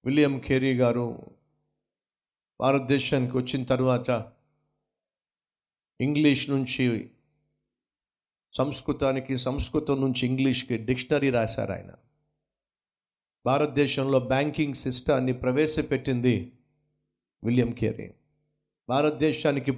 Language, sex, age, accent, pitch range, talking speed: Telugu, male, 50-69, native, 125-150 Hz, 65 wpm